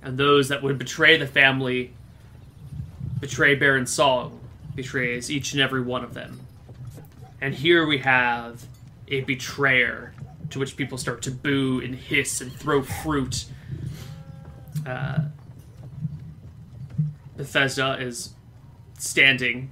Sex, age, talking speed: male, 20-39, 115 wpm